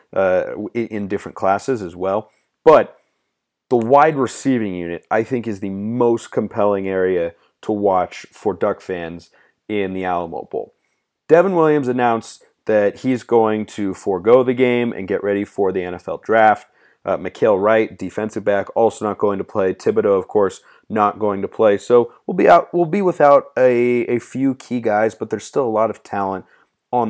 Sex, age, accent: male, 30-49, American